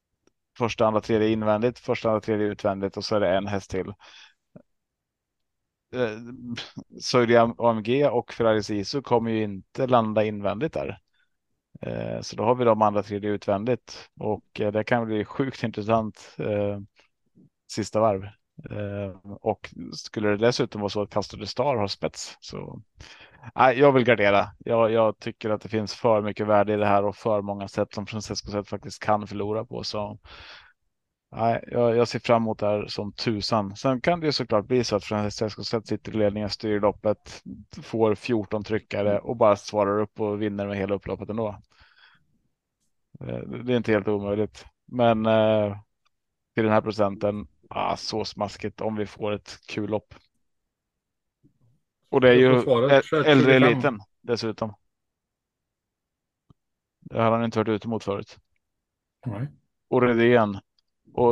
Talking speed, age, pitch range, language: 160 wpm, 30-49, 105-115 Hz, Swedish